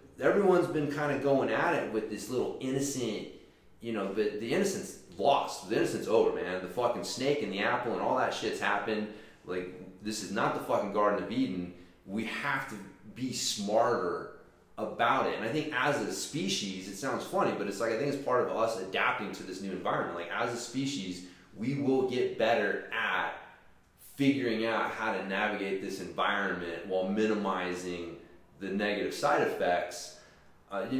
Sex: male